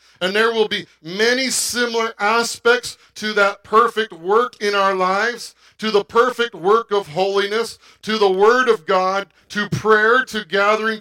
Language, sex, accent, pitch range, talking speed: English, male, American, 180-235 Hz, 160 wpm